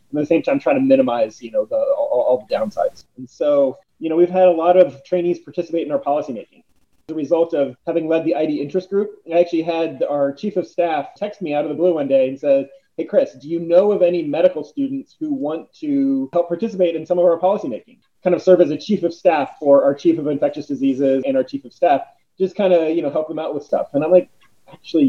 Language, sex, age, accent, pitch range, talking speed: English, male, 30-49, American, 150-205 Hz, 255 wpm